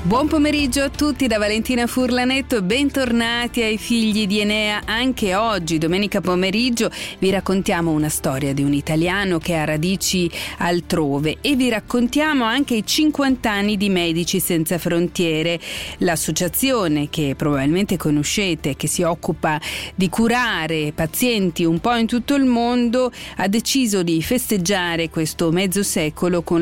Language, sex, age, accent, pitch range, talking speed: Italian, female, 40-59, native, 165-230 Hz, 140 wpm